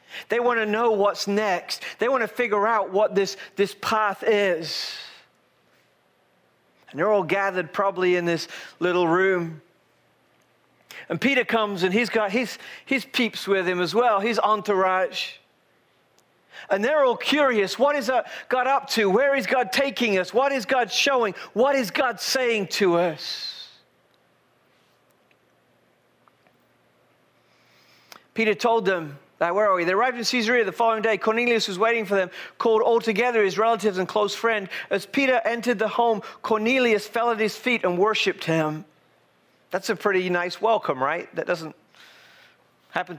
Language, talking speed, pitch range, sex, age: English, 155 wpm, 185-235 Hz, male, 40-59